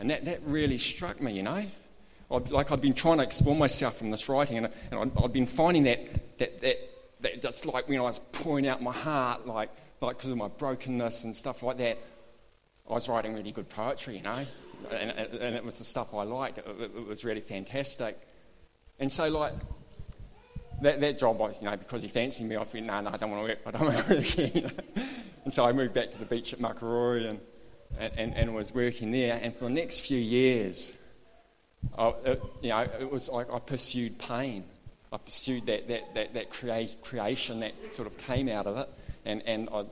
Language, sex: English, male